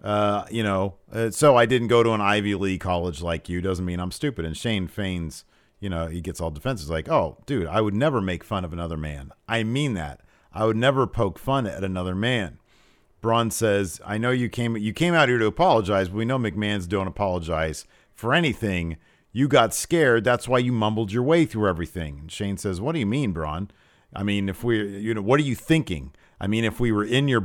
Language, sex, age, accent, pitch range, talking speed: English, male, 40-59, American, 95-145 Hz, 230 wpm